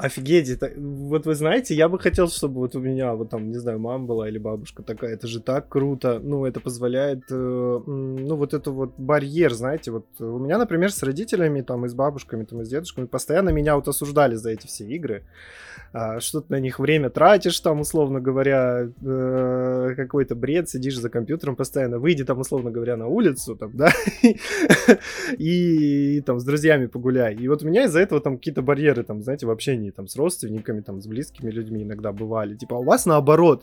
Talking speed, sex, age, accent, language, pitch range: 200 wpm, male, 20-39, native, Russian, 120-150 Hz